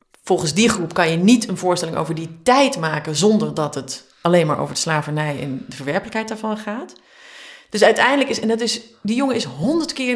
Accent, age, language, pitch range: Dutch, 30-49, Dutch, 160-230 Hz